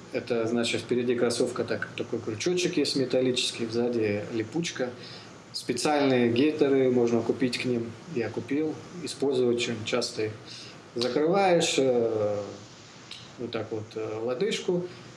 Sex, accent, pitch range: male, native, 115-140 Hz